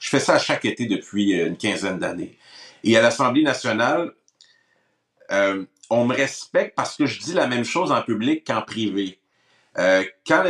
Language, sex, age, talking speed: French, male, 50-69, 175 wpm